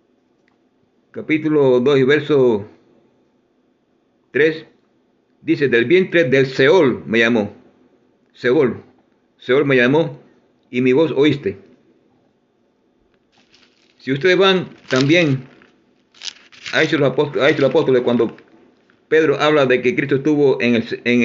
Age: 50-69